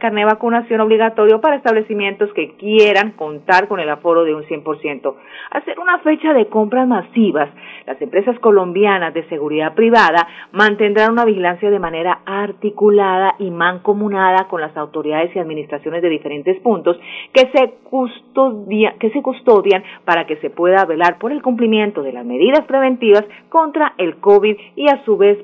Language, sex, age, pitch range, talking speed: Spanish, female, 40-59, 175-240 Hz, 165 wpm